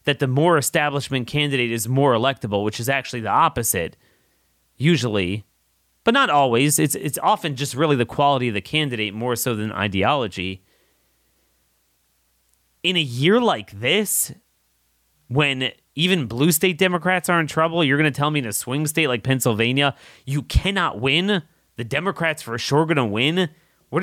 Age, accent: 30-49, American